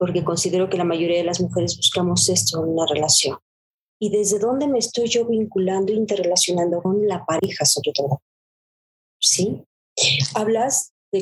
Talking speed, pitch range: 160 wpm, 175-210 Hz